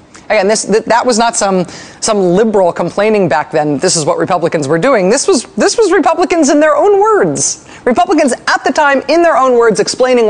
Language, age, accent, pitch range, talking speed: English, 40-59, American, 170-250 Hz, 210 wpm